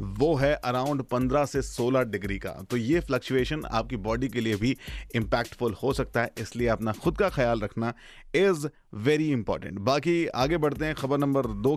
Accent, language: native, Hindi